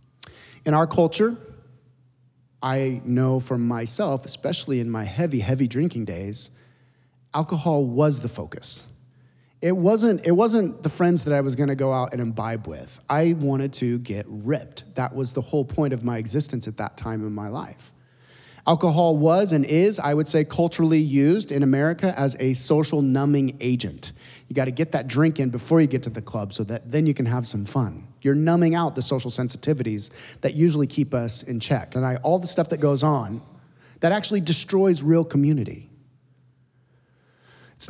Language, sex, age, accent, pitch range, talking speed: English, male, 30-49, American, 125-160 Hz, 175 wpm